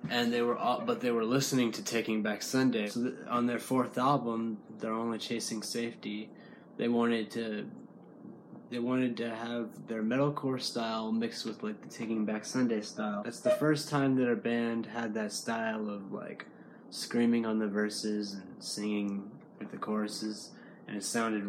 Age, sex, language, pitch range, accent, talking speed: 20-39, male, English, 105-120 Hz, American, 180 wpm